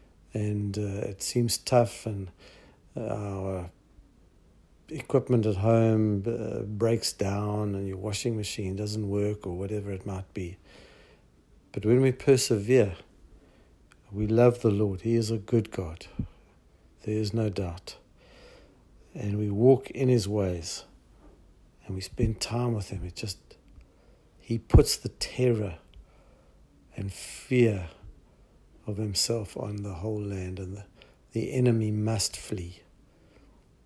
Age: 60-79